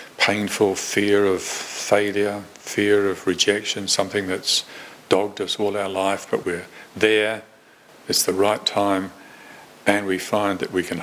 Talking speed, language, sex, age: 145 wpm, English, male, 50-69